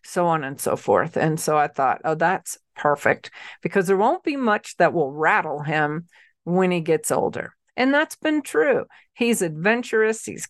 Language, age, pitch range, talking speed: English, 40-59, 160-205 Hz, 185 wpm